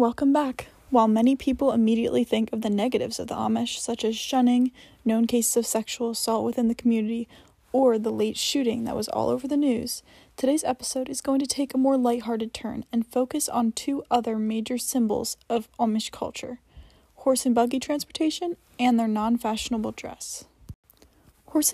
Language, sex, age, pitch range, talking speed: English, female, 10-29, 225-260 Hz, 175 wpm